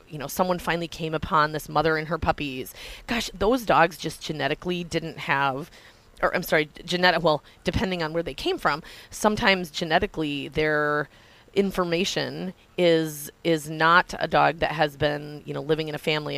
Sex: female